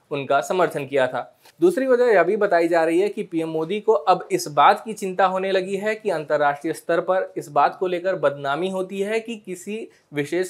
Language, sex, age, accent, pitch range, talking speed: Hindi, male, 20-39, native, 150-205 Hz, 225 wpm